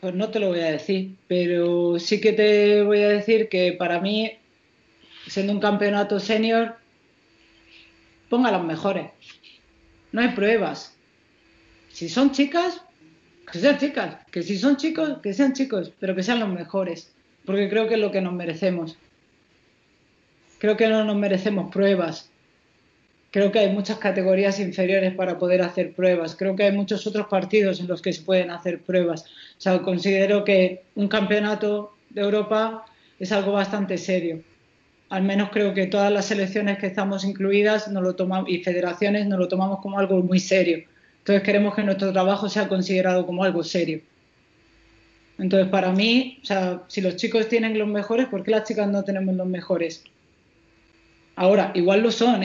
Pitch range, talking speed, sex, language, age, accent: 185-215 Hz, 170 wpm, female, Spanish, 40-59, Spanish